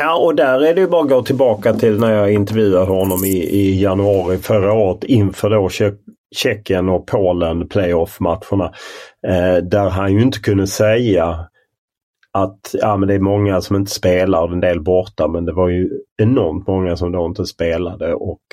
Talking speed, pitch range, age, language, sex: 190 wpm, 90-110 Hz, 30-49, Swedish, male